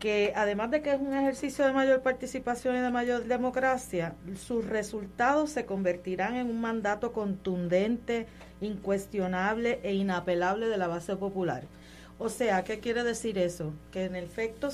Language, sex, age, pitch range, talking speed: Spanish, female, 30-49, 185-245 Hz, 155 wpm